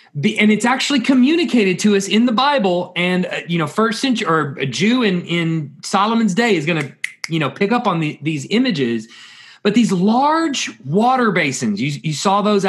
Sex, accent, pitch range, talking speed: male, American, 170-230 Hz, 195 wpm